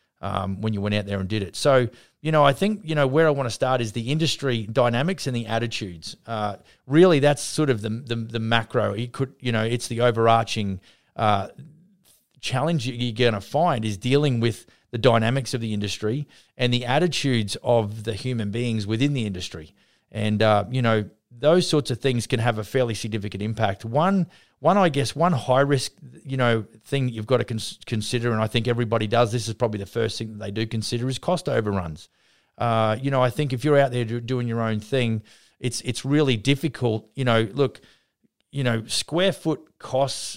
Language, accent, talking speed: English, Australian, 205 wpm